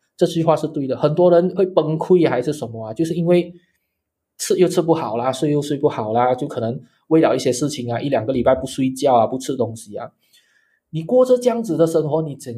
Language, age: Chinese, 20-39